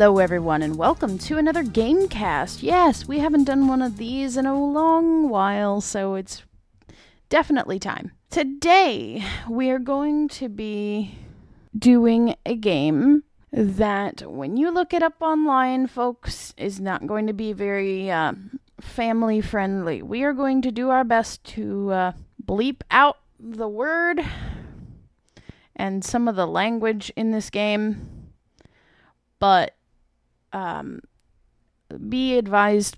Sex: female